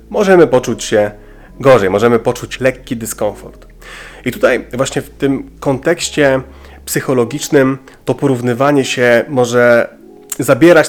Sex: male